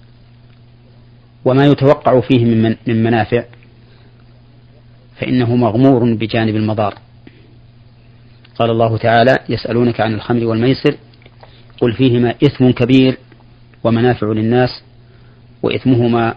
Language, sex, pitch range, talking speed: Arabic, male, 115-120 Hz, 90 wpm